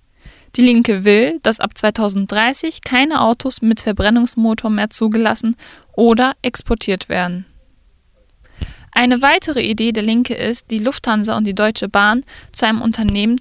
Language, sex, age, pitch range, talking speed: German, female, 10-29, 200-250 Hz, 135 wpm